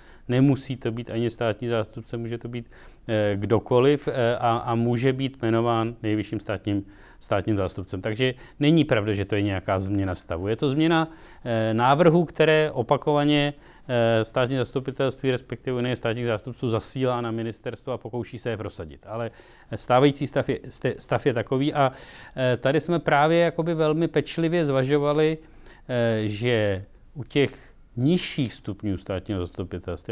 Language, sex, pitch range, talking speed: Czech, male, 110-135 Hz, 140 wpm